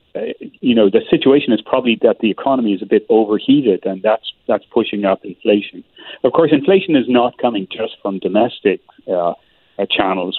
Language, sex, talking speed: English, male, 185 wpm